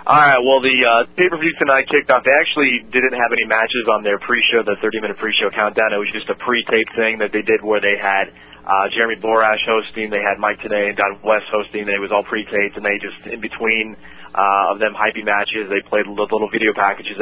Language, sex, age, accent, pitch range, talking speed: English, male, 20-39, American, 100-115 Hz, 225 wpm